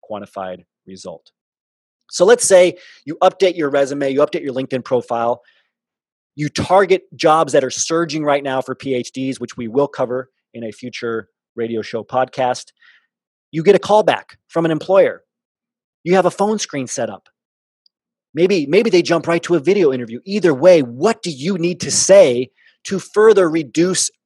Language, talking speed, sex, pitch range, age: English, 170 wpm, male, 130-190 Hz, 30-49